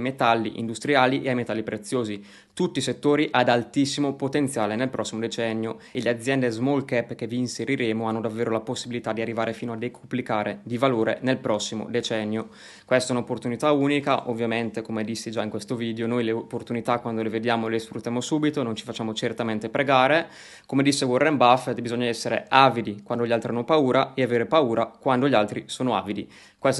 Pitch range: 115-130 Hz